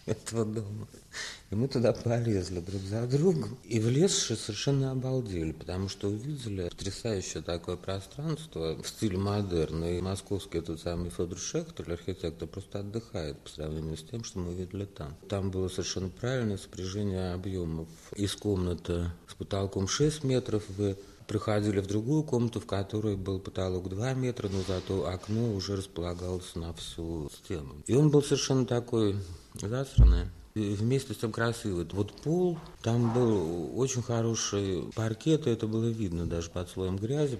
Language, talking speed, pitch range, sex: Russian, 155 wpm, 85-110 Hz, male